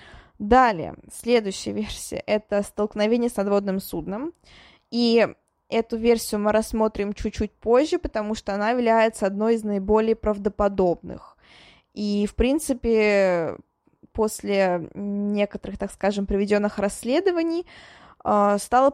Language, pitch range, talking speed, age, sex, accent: Russian, 200-235 Hz, 110 wpm, 20-39, female, native